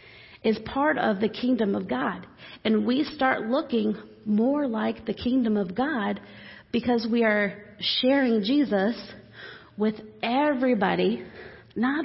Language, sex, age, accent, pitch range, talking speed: English, female, 40-59, American, 195-240 Hz, 125 wpm